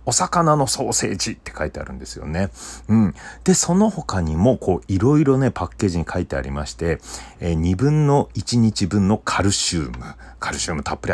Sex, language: male, Japanese